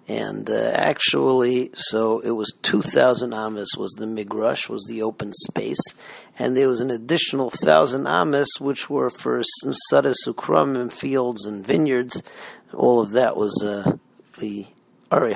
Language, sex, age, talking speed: English, male, 40-59, 150 wpm